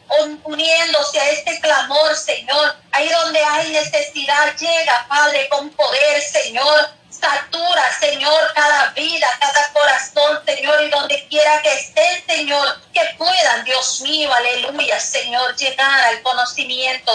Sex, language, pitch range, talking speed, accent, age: female, Spanish, 255-300 Hz, 125 wpm, American, 30-49